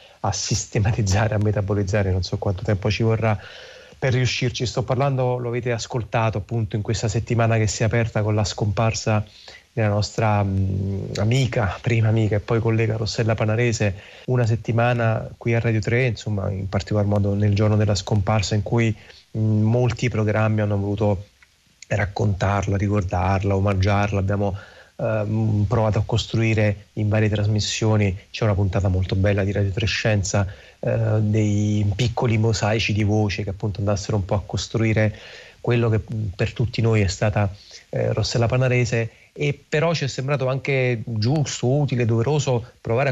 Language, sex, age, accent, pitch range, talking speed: Italian, male, 30-49, native, 100-115 Hz, 150 wpm